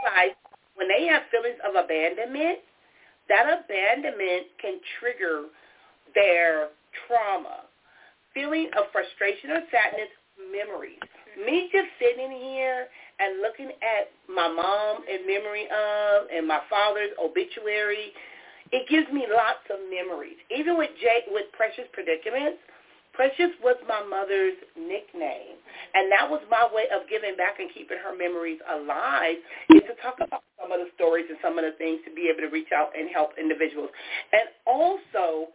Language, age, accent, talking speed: English, 40-59, American, 145 wpm